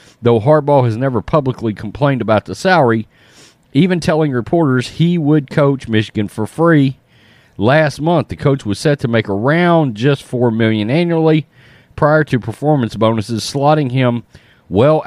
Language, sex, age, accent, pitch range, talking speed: English, male, 40-59, American, 105-135 Hz, 150 wpm